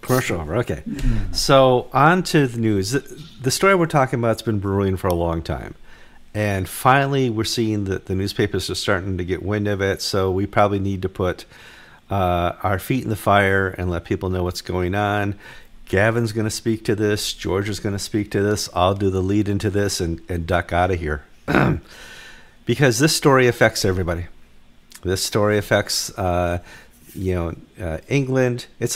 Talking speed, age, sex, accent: 185 wpm, 50-69, male, American